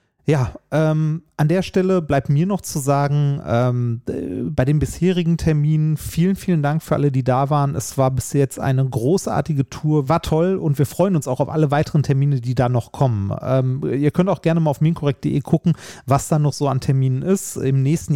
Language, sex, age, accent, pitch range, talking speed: German, male, 30-49, German, 125-160 Hz, 210 wpm